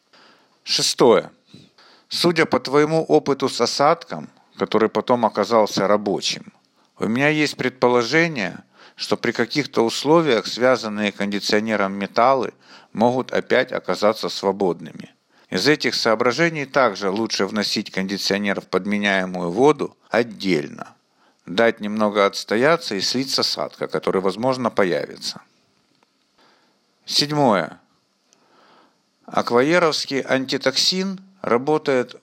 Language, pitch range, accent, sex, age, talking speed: Russian, 105-140 Hz, native, male, 50-69, 95 wpm